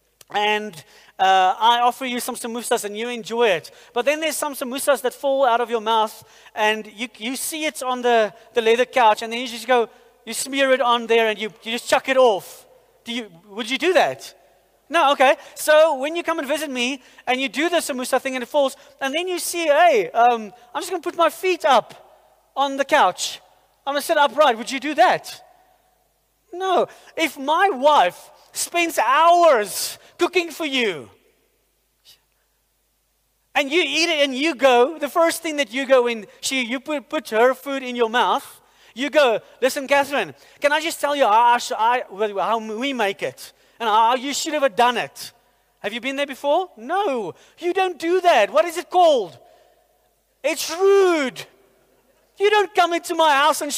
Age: 30-49